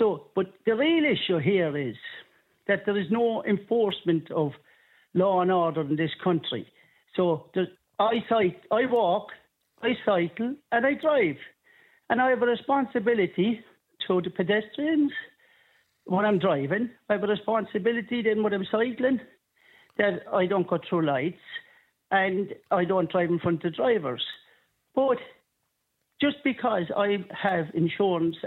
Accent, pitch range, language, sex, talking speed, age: British, 175-230 Hz, English, male, 145 wpm, 60-79